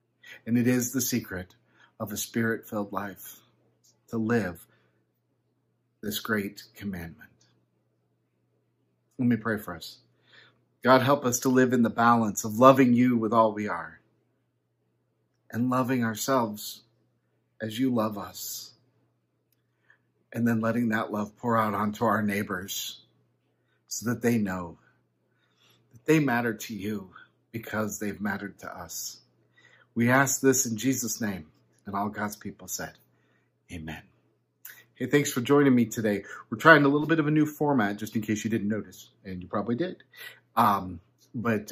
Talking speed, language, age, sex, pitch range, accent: 150 wpm, English, 50-69, male, 100-125 Hz, American